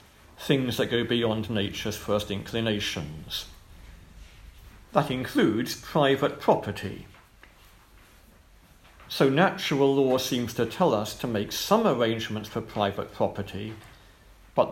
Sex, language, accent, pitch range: male, English, British, 90-130 Hz